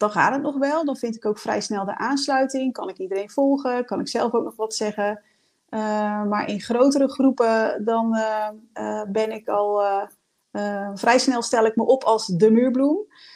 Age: 30-49